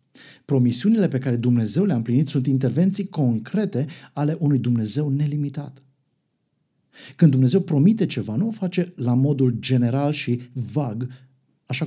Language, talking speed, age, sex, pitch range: Romanian, 130 wpm, 50-69, male, 130-175 Hz